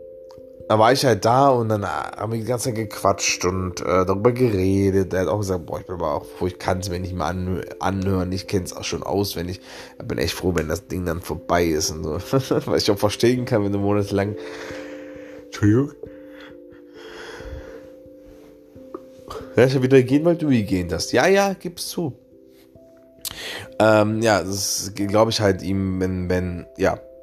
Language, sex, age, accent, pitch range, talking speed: German, male, 20-39, German, 90-110 Hz, 185 wpm